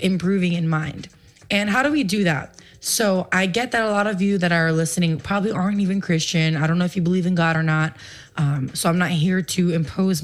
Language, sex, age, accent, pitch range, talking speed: Spanish, female, 20-39, American, 160-195 Hz, 240 wpm